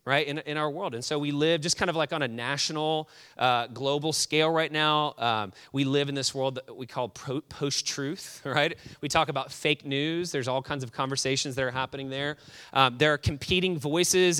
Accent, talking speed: American, 215 wpm